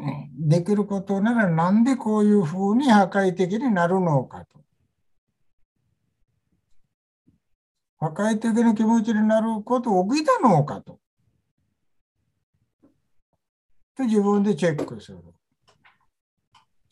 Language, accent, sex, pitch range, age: Japanese, Indian, male, 145-220 Hz, 60-79